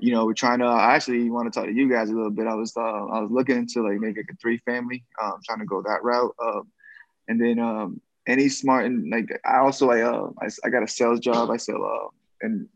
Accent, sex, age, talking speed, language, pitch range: American, male, 20-39, 270 wpm, English, 115-140 Hz